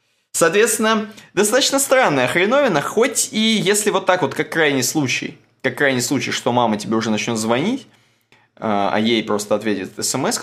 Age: 20-39